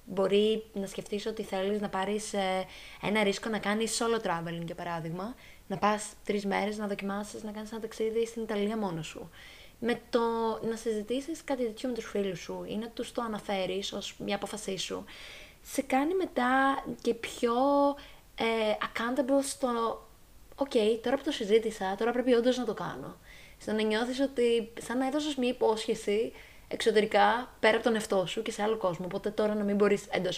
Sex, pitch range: female, 195-235 Hz